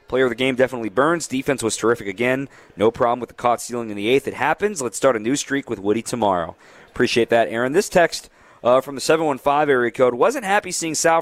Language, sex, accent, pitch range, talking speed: English, male, American, 115-150 Hz, 235 wpm